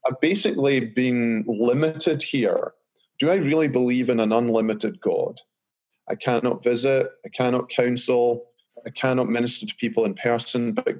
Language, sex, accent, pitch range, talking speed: English, male, British, 120-155 Hz, 145 wpm